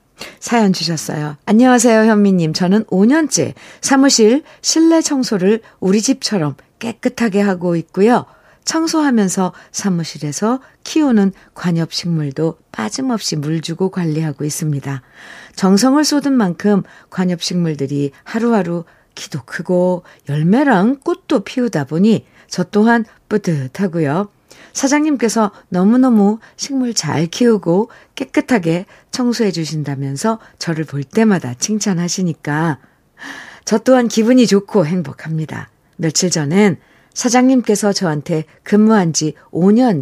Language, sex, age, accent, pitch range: Korean, female, 50-69, native, 155-230 Hz